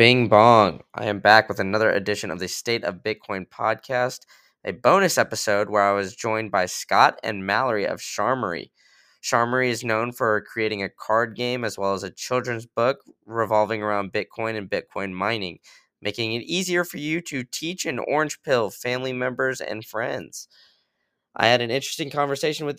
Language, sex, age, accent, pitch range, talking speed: English, male, 20-39, American, 105-130 Hz, 175 wpm